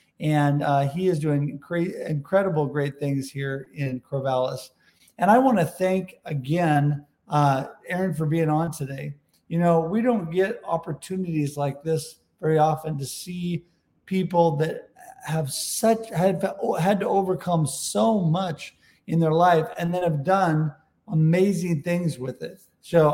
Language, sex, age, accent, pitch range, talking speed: English, male, 50-69, American, 155-185 Hz, 150 wpm